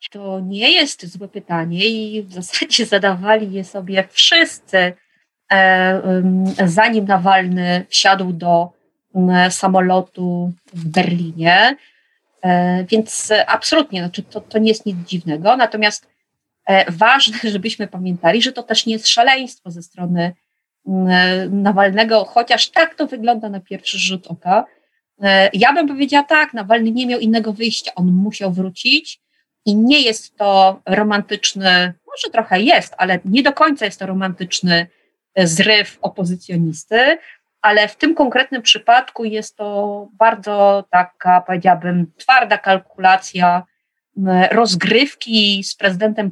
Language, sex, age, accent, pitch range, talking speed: Polish, female, 30-49, native, 185-230 Hz, 120 wpm